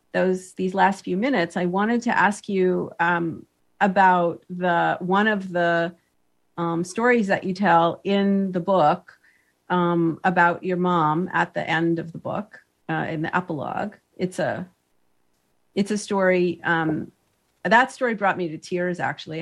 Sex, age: female, 40-59